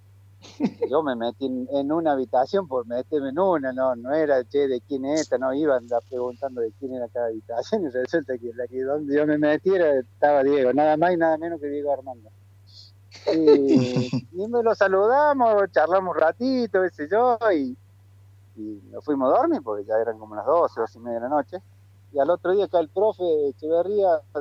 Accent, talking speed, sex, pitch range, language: Argentinian, 200 wpm, male, 115-175 Hz, Spanish